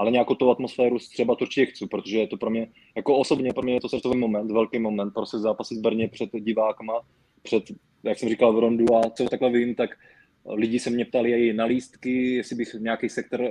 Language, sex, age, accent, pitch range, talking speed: Czech, male, 20-39, native, 110-120 Hz, 225 wpm